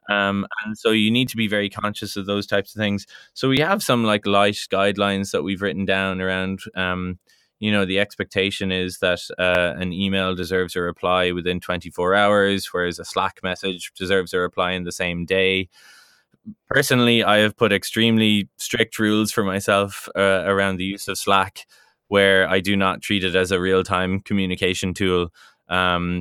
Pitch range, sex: 90-105 Hz, male